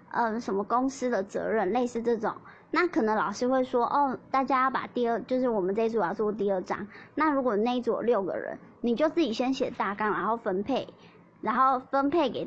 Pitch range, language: 215-265 Hz, Chinese